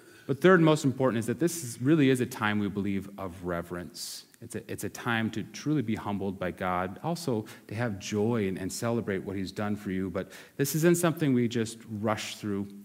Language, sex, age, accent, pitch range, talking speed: English, male, 30-49, American, 100-125 Hz, 215 wpm